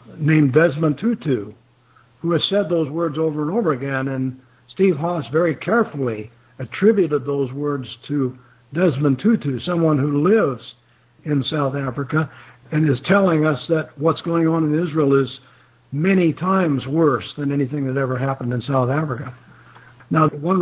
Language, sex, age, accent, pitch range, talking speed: English, male, 60-79, American, 130-170 Hz, 155 wpm